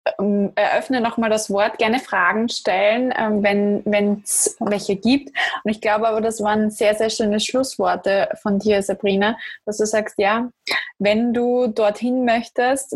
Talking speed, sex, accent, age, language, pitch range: 155 wpm, female, German, 20-39, German, 210-240 Hz